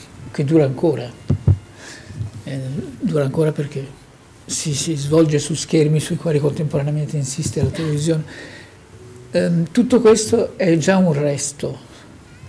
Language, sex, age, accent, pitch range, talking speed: Italian, male, 50-69, native, 130-165 Hz, 120 wpm